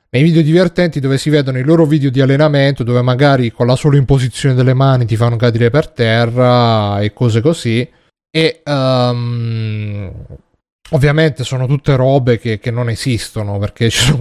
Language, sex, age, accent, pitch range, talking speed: Italian, male, 30-49, native, 115-135 Hz, 170 wpm